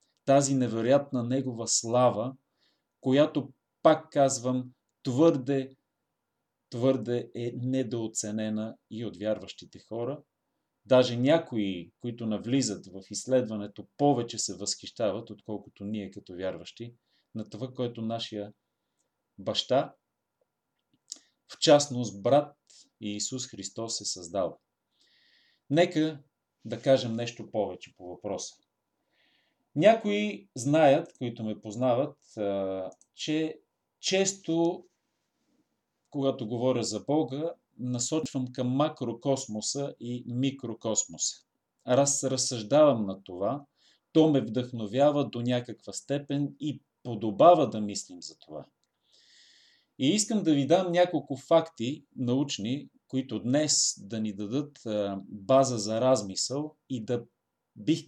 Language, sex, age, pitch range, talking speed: Bulgarian, male, 30-49, 110-145 Hz, 100 wpm